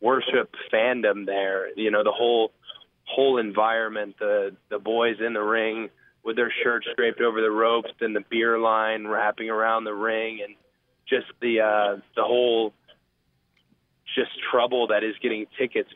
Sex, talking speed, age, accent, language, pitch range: male, 160 wpm, 20-39, American, English, 105-120 Hz